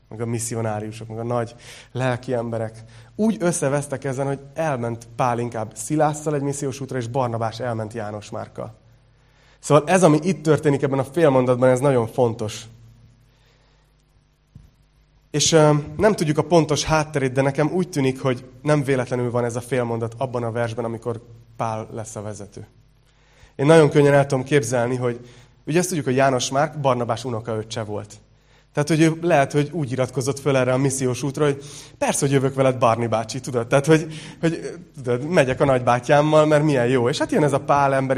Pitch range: 120-150 Hz